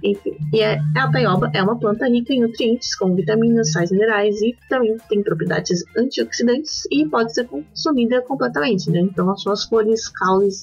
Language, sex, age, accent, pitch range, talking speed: Portuguese, female, 20-39, Brazilian, 185-230 Hz, 170 wpm